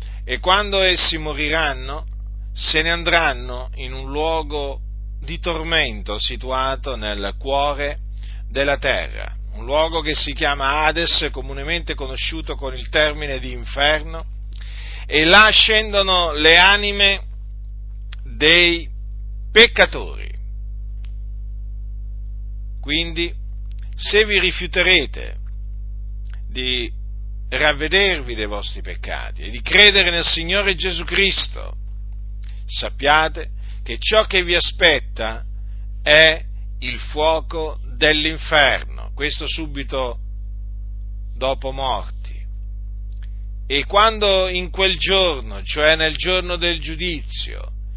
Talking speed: 95 wpm